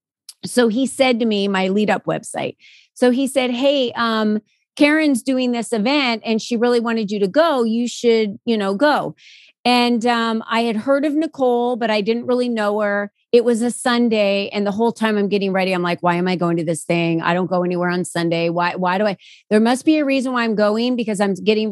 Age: 30-49